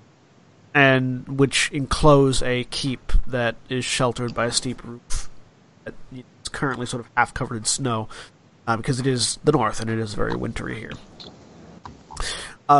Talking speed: 155 wpm